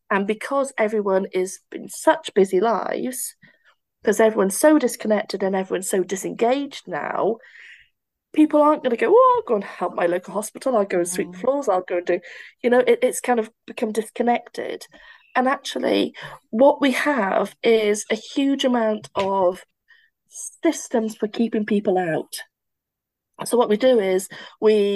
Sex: female